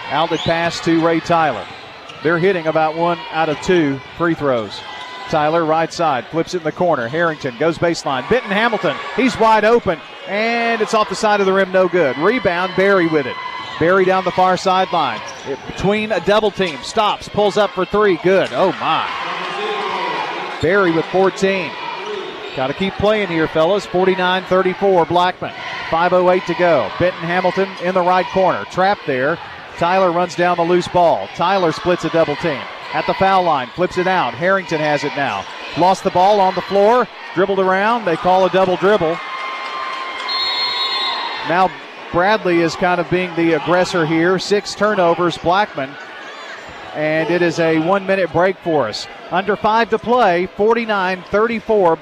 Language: English